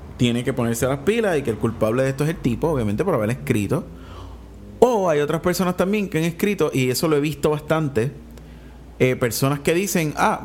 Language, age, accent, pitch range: Spanish, 30-49, Venezuelan, 110-160 Hz